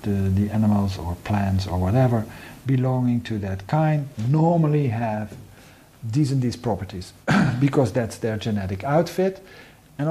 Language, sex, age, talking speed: English, male, 50-69, 135 wpm